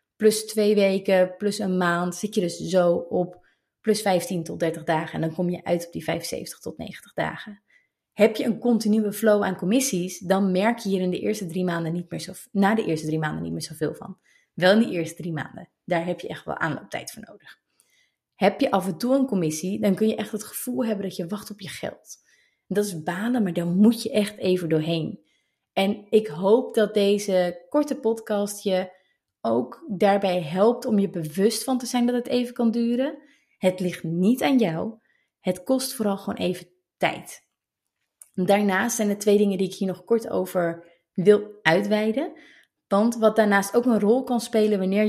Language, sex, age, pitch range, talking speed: Dutch, female, 30-49, 180-225 Hz, 205 wpm